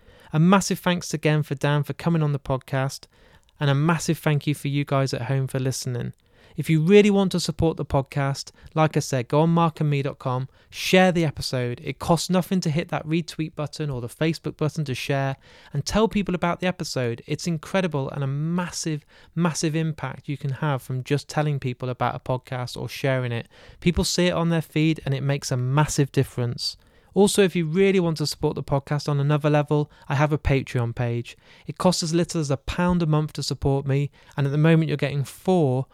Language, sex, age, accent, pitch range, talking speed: English, male, 30-49, British, 135-165 Hz, 215 wpm